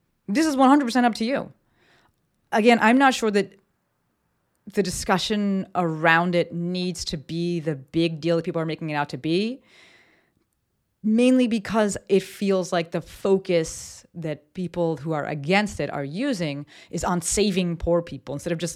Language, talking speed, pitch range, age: English, 165 wpm, 160-210 Hz, 30-49